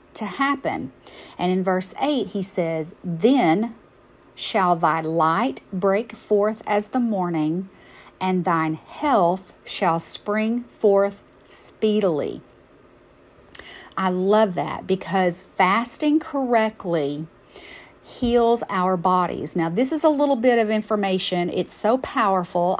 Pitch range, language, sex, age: 185-225 Hz, English, female, 50-69